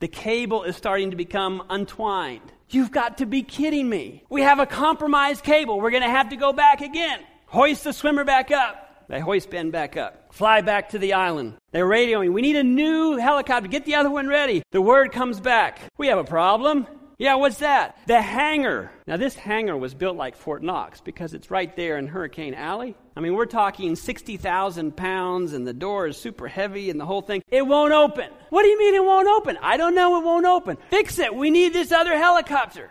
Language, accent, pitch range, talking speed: English, American, 195-280 Hz, 220 wpm